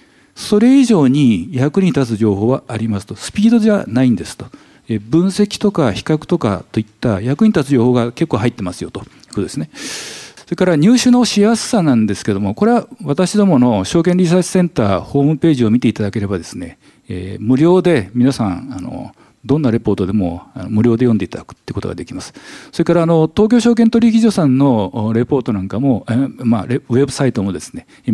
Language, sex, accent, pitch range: Japanese, male, native, 115-180 Hz